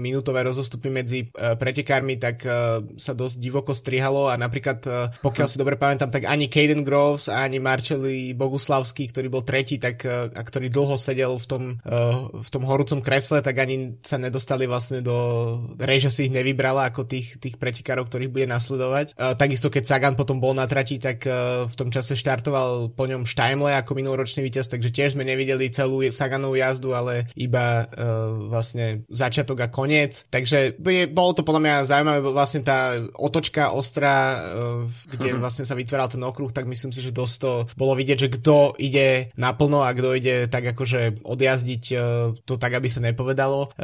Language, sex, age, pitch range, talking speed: Slovak, male, 20-39, 125-140 Hz, 170 wpm